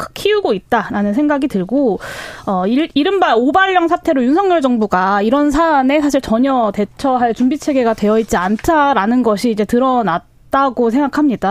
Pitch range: 220-295 Hz